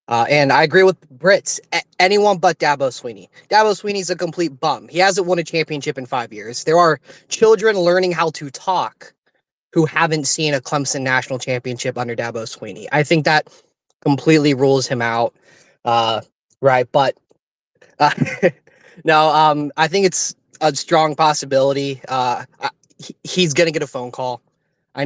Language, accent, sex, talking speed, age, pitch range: English, American, male, 165 wpm, 20-39, 130-160 Hz